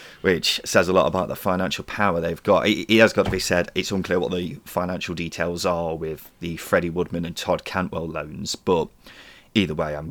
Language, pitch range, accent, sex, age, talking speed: English, 90-110 Hz, British, male, 30-49, 210 wpm